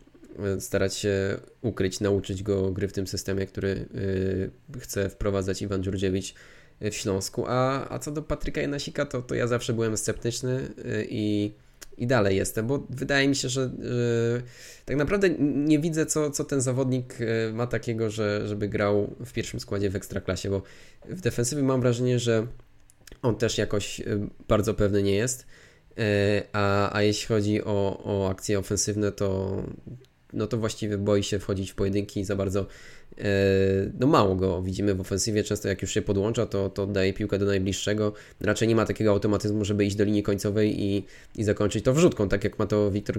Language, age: Polish, 20-39